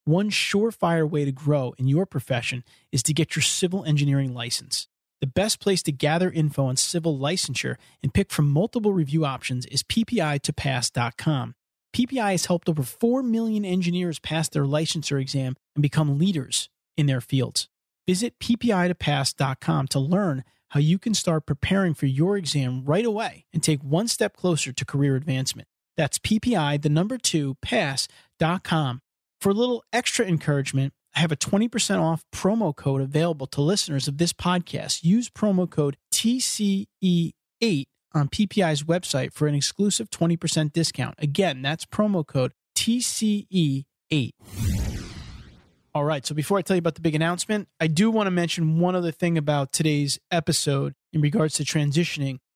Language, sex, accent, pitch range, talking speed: English, male, American, 140-185 Hz, 160 wpm